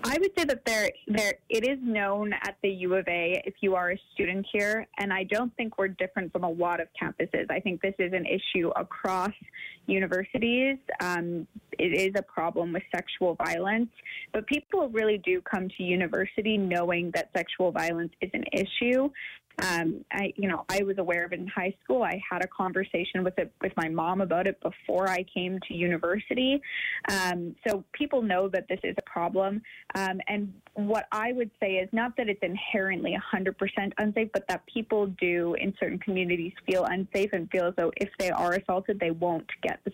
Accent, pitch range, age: American, 180-215 Hz, 20-39